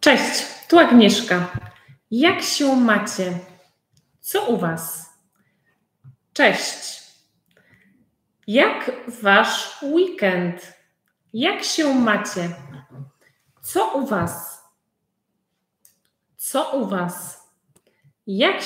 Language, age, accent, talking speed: Polish, 30-49, native, 75 wpm